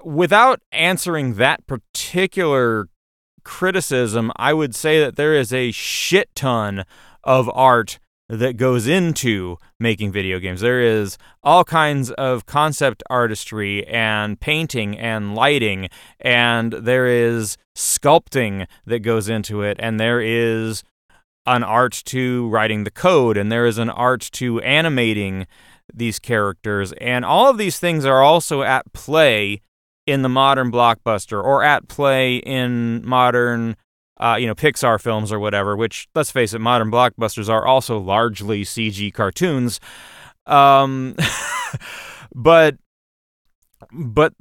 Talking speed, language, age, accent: 130 wpm, English, 30-49, American